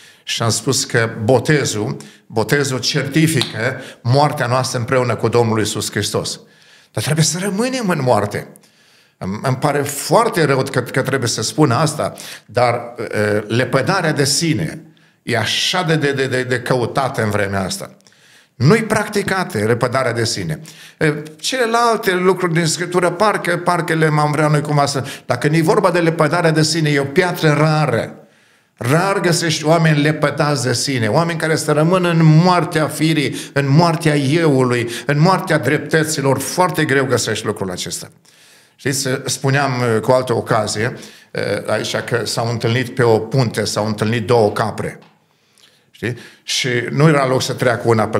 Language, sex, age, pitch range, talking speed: Romanian, male, 50-69, 115-160 Hz, 155 wpm